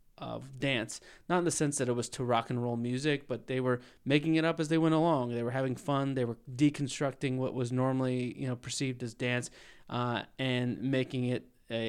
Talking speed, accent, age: 220 wpm, American, 20-39